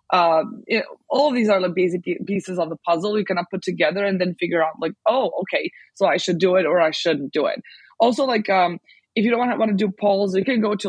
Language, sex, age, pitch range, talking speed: English, female, 20-39, 175-210 Hz, 270 wpm